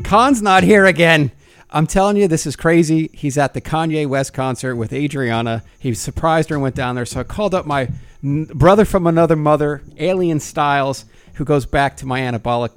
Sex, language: male, English